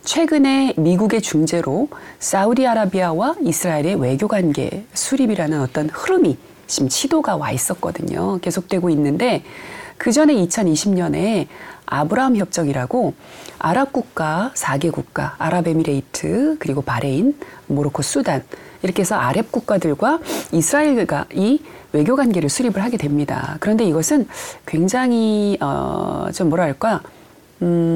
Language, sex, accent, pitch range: Korean, female, native, 160-265 Hz